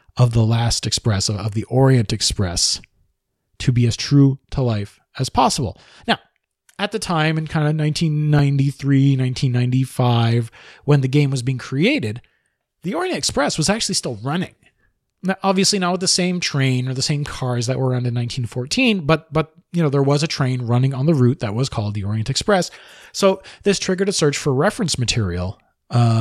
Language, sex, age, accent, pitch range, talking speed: English, male, 30-49, American, 120-160 Hz, 185 wpm